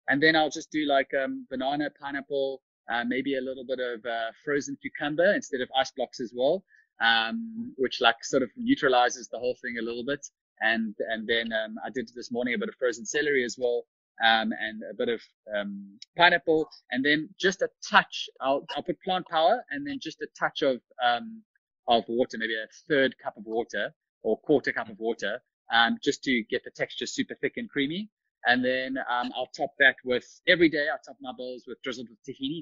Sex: male